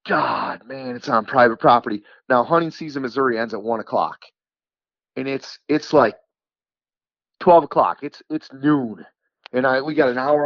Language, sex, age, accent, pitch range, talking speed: English, male, 30-49, American, 105-155 Hz, 165 wpm